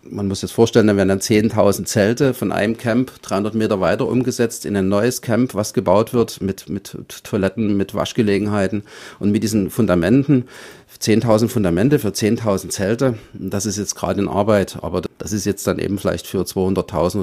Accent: German